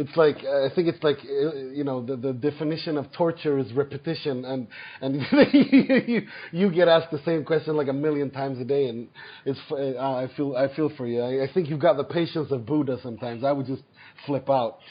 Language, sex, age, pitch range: English, male, 30-49, 125-150 Hz